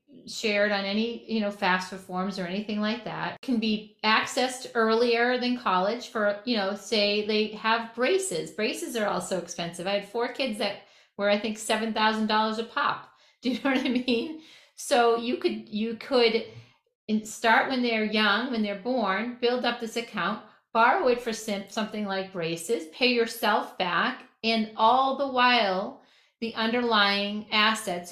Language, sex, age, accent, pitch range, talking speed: English, female, 40-59, American, 200-240 Hz, 170 wpm